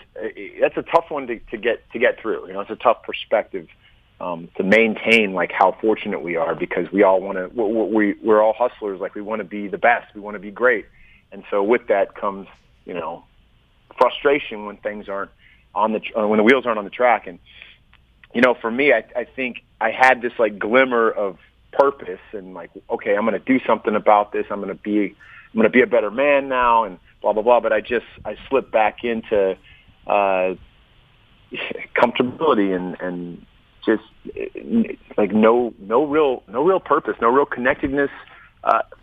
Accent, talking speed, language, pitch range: American, 210 wpm, English, 100-120 Hz